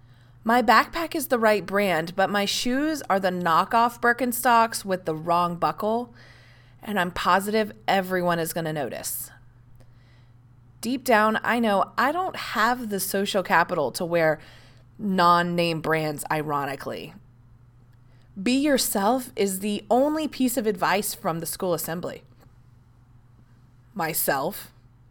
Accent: American